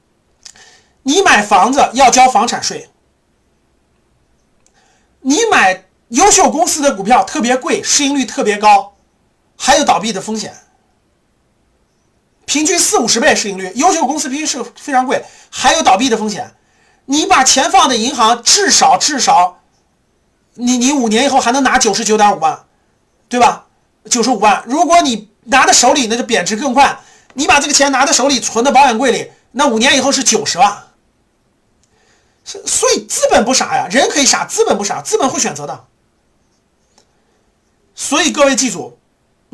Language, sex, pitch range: Chinese, male, 230-290 Hz